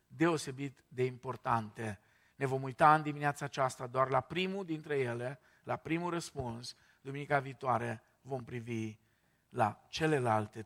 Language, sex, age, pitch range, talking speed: Romanian, male, 50-69, 130-195 Hz, 130 wpm